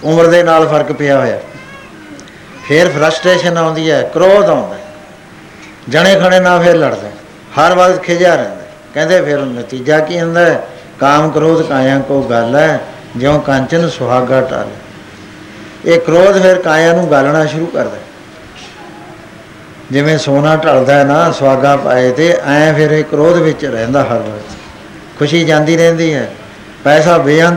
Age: 60-79